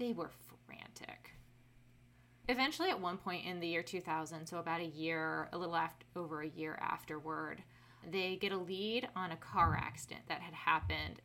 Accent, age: American, 20-39